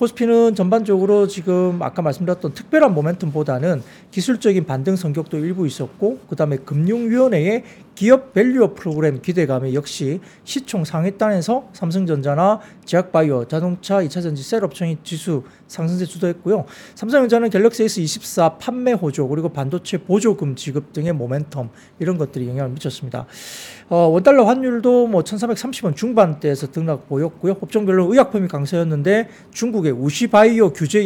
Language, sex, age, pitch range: Korean, male, 40-59, 150-215 Hz